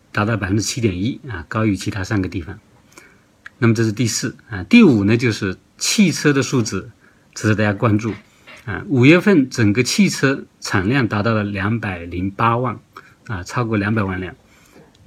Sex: male